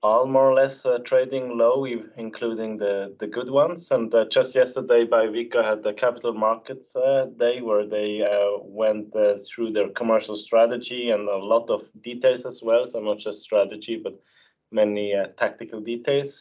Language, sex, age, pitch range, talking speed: Swedish, male, 20-39, 105-125 Hz, 180 wpm